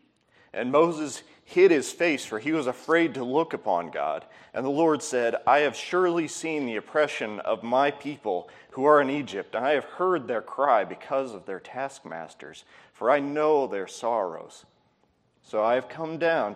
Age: 30-49